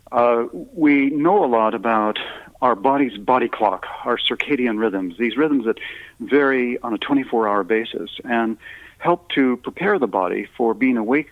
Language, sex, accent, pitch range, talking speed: English, male, American, 105-135 Hz, 160 wpm